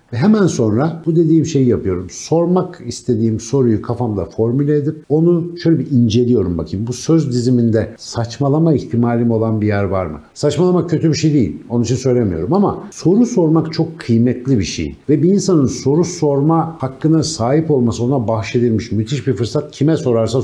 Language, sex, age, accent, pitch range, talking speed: Turkish, male, 60-79, native, 110-150 Hz, 170 wpm